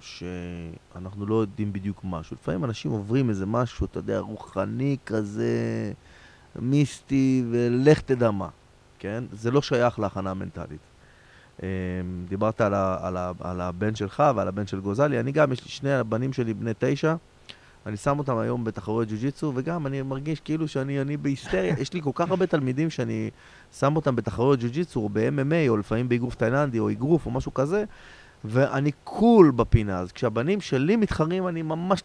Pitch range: 105-140 Hz